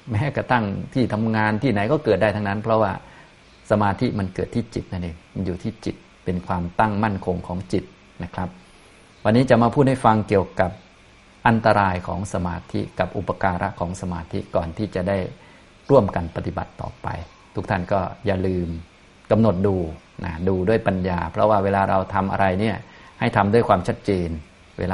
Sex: male